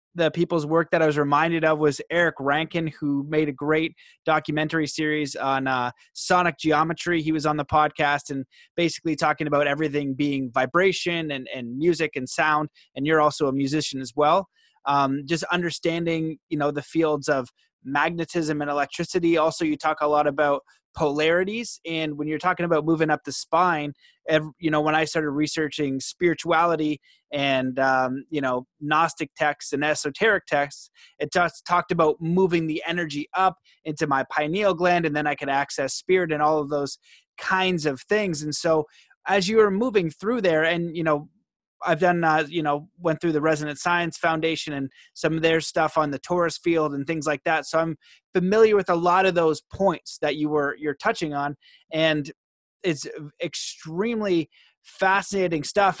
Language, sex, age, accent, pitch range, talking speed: English, male, 20-39, American, 150-170 Hz, 180 wpm